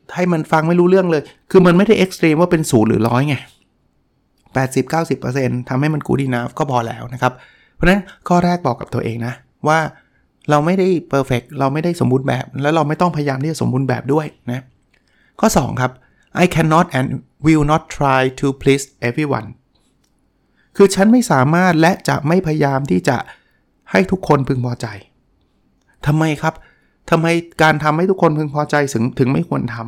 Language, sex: Thai, male